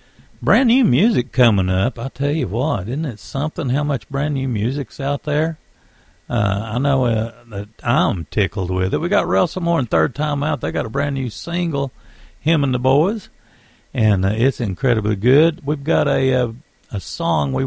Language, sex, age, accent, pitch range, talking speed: English, male, 60-79, American, 105-140 Hz, 195 wpm